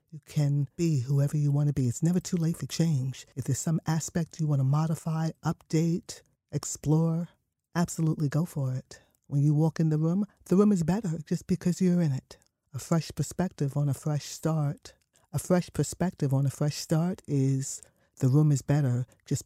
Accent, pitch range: American, 135-165 Hz